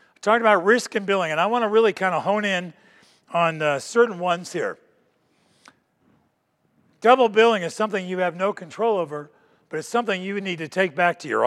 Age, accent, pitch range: 50-69, American, 170-225 Hz